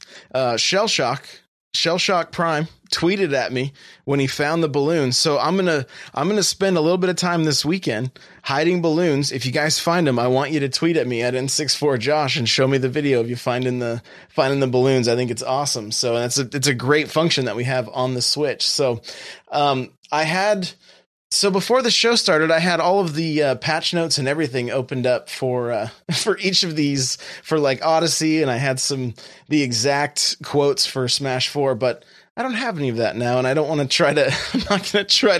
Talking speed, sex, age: 225 wpm, male, 20-39